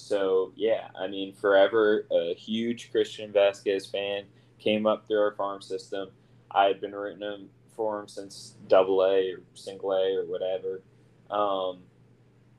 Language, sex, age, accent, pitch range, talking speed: English, male, 20-39, American, 100-125 Hz, 145 wpm